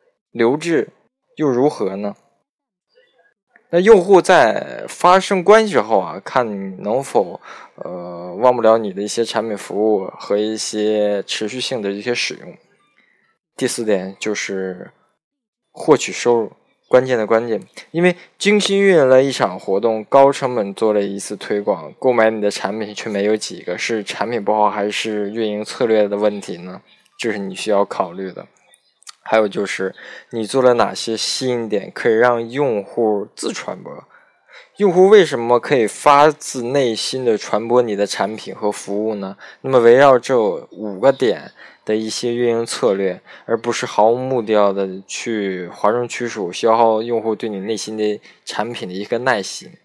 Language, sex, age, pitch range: Chinese, male, 20-39, 105-130 Hz